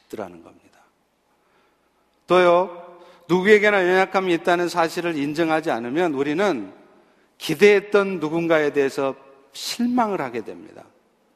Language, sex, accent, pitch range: Korean, male, native, 150-205 Hz